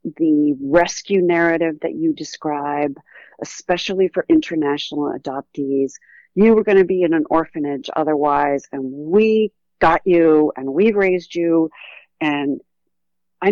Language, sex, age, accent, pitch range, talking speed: English, female, 40-59, American, 150-215 Hz, 130 wpm